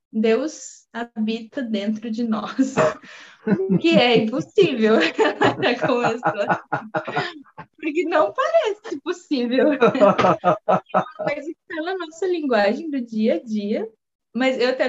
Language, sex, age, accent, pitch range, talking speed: Portuguese, female, 20-39, Brazilian, 205-260 Hz, 95 wpm